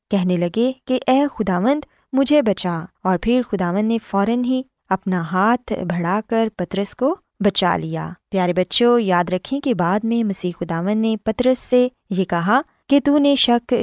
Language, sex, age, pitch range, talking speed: Urdu, female, 20-39, 185-255 Hz, 165 wpm